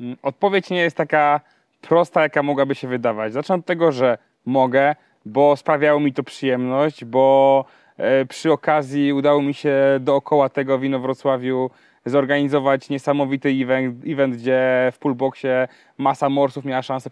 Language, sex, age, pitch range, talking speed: Polish, male, 20-39, 130-145 Hz, 140 wpm